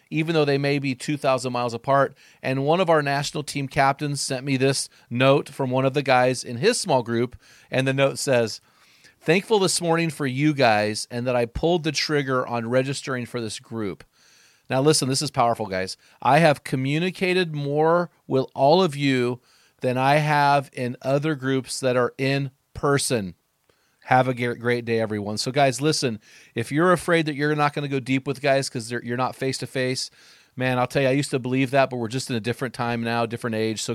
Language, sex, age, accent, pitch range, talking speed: English, male, 40-59, American, 120-145 Hz, 210 wpm